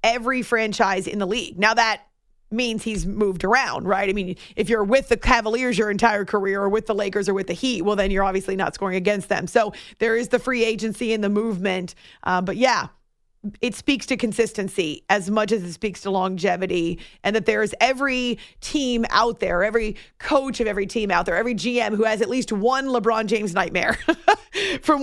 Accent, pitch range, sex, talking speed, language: American, 205-250 Hz, female, 205 wpm, English